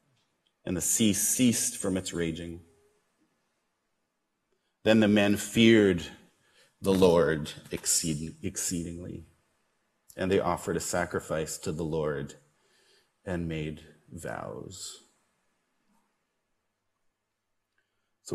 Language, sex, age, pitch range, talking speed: English, male, 30-49, 90-145 Hz, 90 wpm